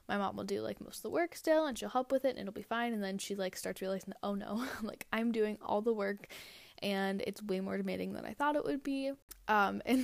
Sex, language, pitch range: female, English, 190-240 Hz